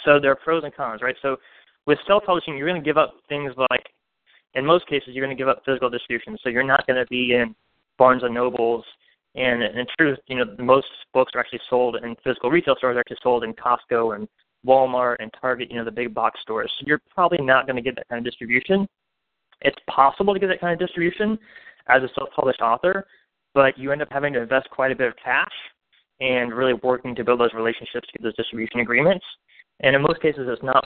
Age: 20-39